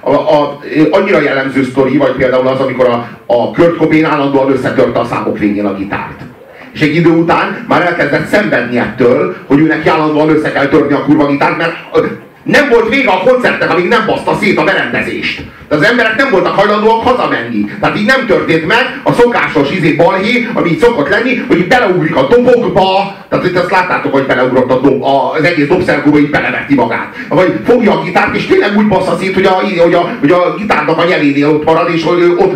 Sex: male